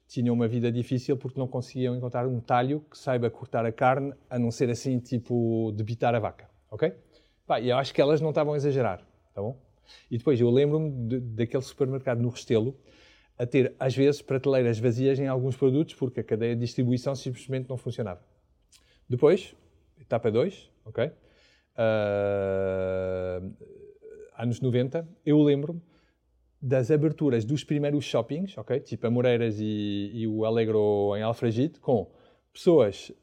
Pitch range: 115-140 Hz